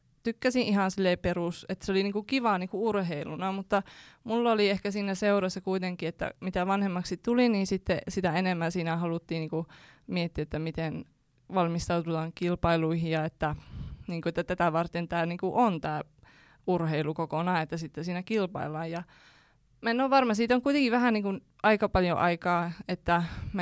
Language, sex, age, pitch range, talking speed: Finnish, female, 20-39, 160-195 Hz, 145 wpm